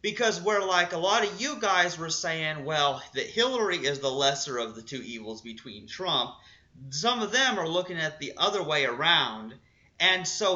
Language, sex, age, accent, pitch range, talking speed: English, male, 30-49, American, 135-185 Hz, 195 wpm